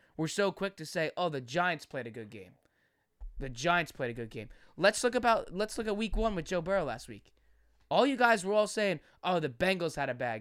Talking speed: 250 wpm